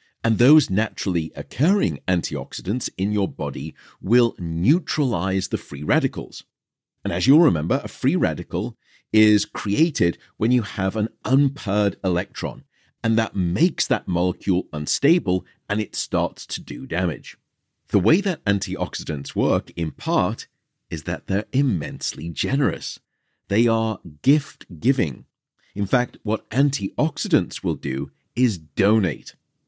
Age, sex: 40-59, male